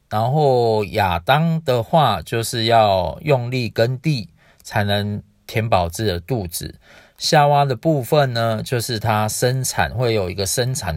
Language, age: Chinese, 40-59